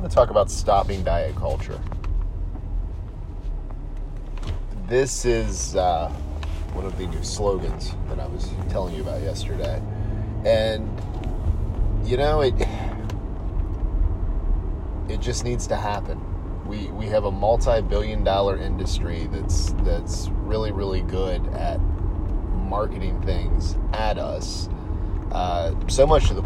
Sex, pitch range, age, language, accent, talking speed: male, 85-100 Hz, 30-49, English, American, 115 wpm